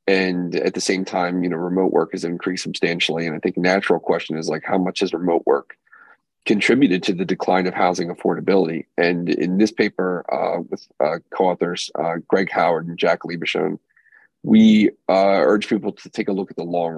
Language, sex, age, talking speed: English, male, 30-49, 200 wpm